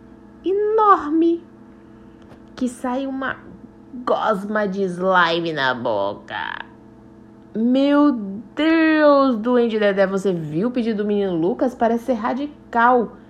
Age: 20-39